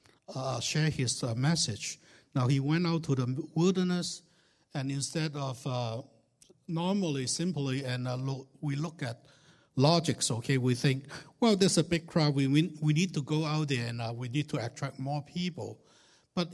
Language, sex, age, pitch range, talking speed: English, male, 60-79, 130-160 Hz, 175 wpm